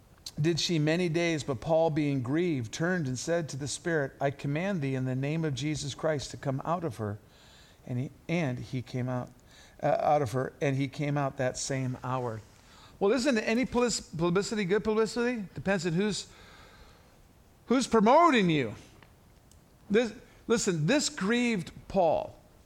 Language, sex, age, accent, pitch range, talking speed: English, male, 50-69, American, 140-200 Hz, 165 wpm